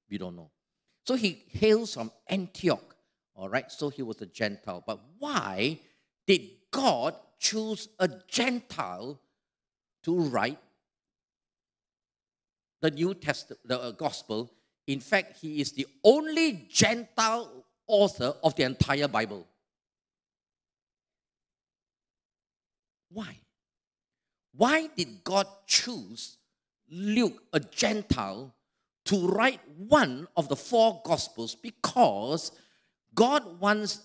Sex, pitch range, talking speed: male, 155-240 Hz, 105 wpm